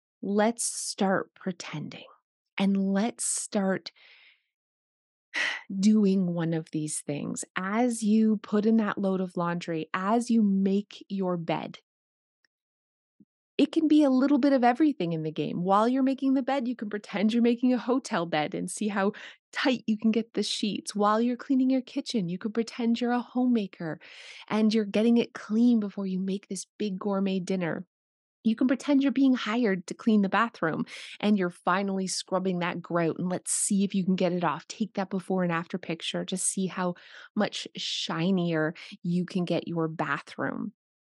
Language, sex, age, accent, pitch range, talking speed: English, female, 30-49, American, 180-235 Hz, 175 wpm